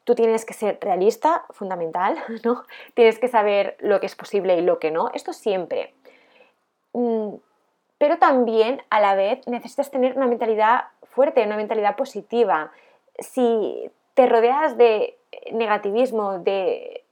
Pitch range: 205-265 Hz